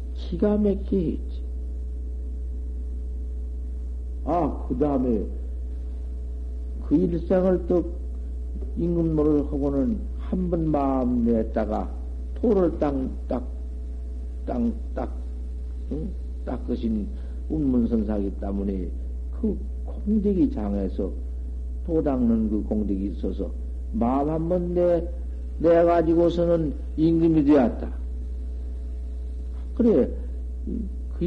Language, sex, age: Korean, male, 50-69